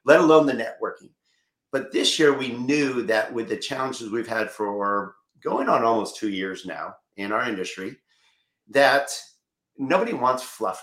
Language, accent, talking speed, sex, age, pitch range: English, American, 160 wpm, male, 50-69, 115-185 Hz